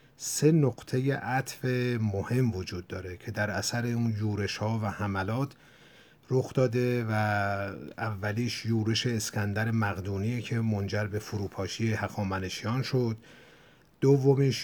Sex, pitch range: male, 105-125 Hz